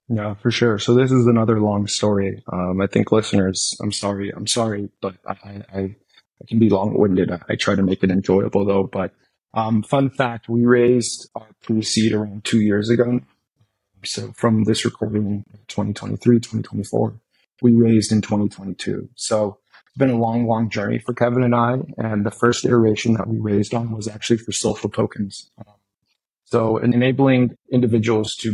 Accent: American